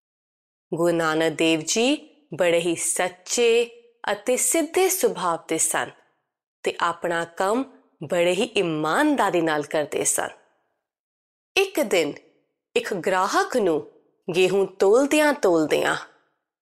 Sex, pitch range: female, 175-235 Hz